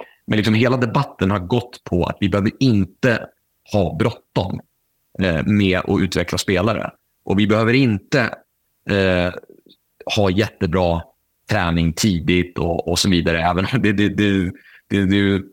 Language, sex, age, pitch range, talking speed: Swedish, male, 30-49, 95-115 Hz, 120 wpm